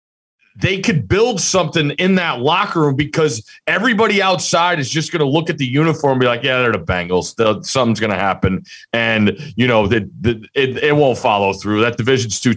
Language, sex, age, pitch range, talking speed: English, male, 30-49, 115-150 Hz, 200 wpm